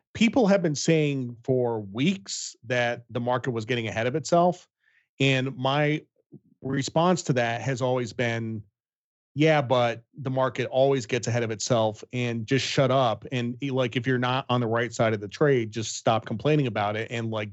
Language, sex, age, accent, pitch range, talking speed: English, male, 30-49, American, 110-135 Hz, 185 wpm